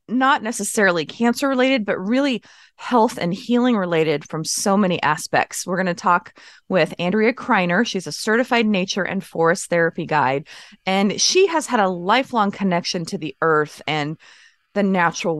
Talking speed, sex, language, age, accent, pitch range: 165 wpm, female, English, 20-39, American, 160-215 Hz